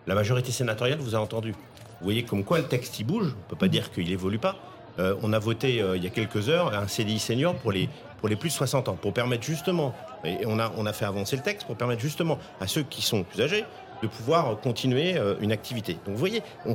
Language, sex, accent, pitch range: French, male, French, 110-140 Hz